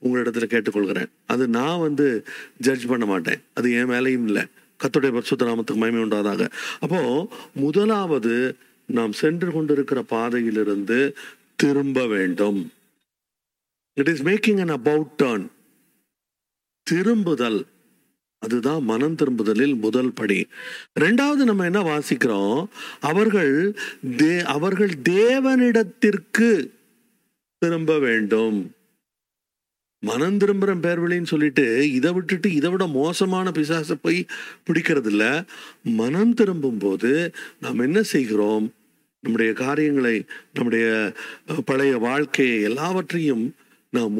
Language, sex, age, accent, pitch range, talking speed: Tamil, male, 50-69, native, 120-190 Hz, 85 wpm